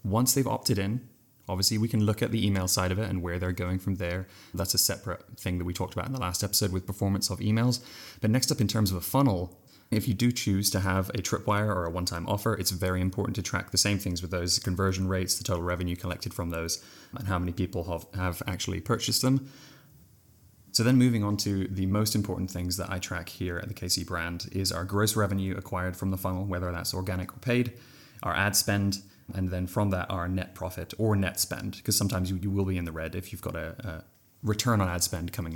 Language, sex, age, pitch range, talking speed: English, male, 20-39, 90-110 Hz, 245 wpm